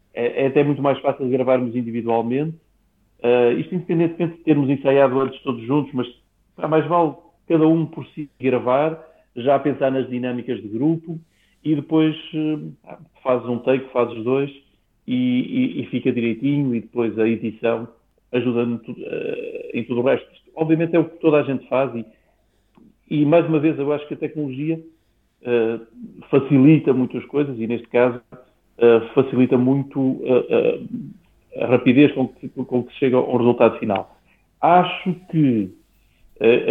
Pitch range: 120-150 Hz